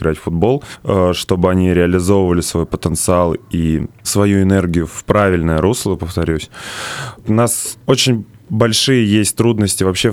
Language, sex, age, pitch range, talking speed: Russian, male, 20-39, 85-100 Hz, 130 wpm